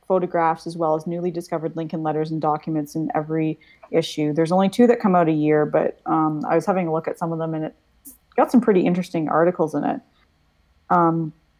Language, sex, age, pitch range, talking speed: English, female, 30-49, 155-185 Hz, 215 wpm